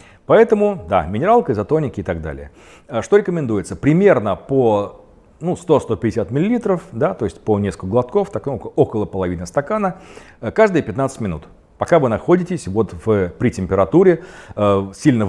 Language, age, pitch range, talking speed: Russian, 40-59, 100-155 Hz, 120 wpm